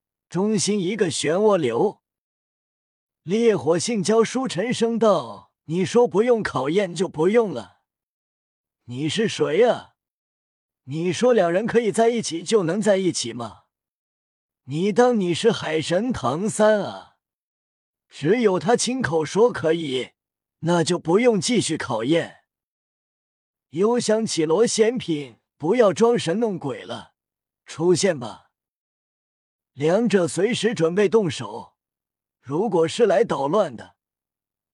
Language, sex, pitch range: Chinese, male, 150-220 Hz